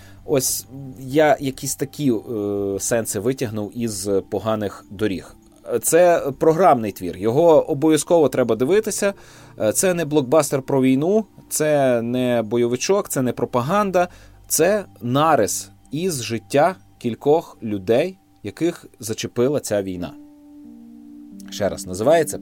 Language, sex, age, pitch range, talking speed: Ukrainian, male, 30-49, 100-155 Hz, 110 wpm